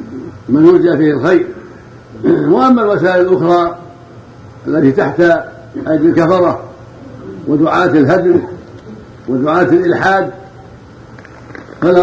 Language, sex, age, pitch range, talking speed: Arabic, male, 60-79, 150-185 Hz, 80 wpm